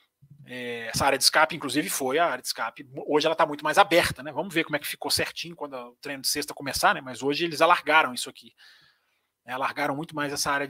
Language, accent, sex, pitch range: Portuguese, Brazilian, male, 140-180 Hz